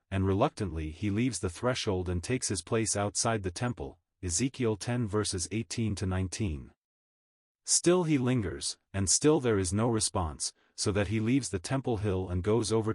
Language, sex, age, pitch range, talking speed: English, male, 30-49, 90-120 Hz, 175 wpm